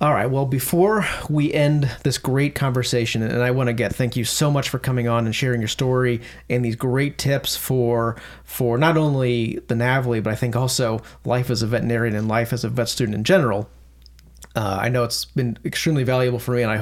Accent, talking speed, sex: American, 220 wpm, male